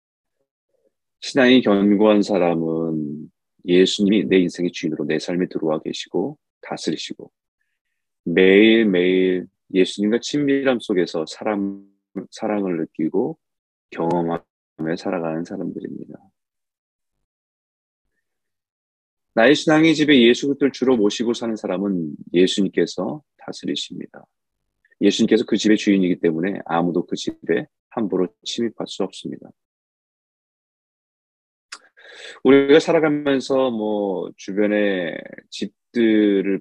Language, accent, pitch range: Korean, native, 85-115 Hz